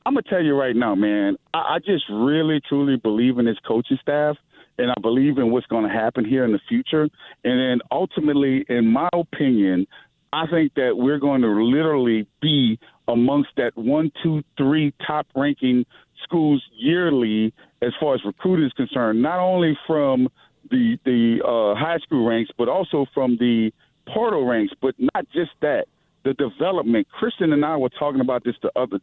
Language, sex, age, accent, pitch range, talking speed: English, male, 40-59, American, 130-170 Hz, 180 wpm